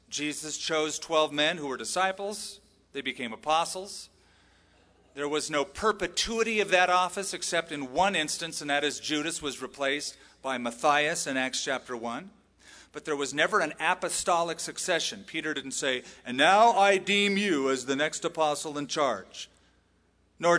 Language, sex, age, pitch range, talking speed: English, male, 40-59, 130-185 Hz, 160 wpm